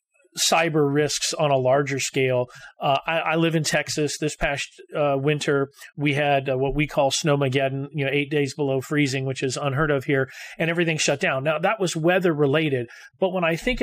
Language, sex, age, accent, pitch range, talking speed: English, male, 40-59, American, 135-170 Hz, 205 wpm